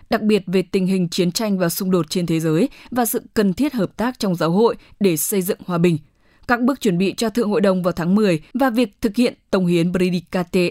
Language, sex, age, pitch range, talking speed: English, female, 20-39, 175-220 Hz, 250 wpm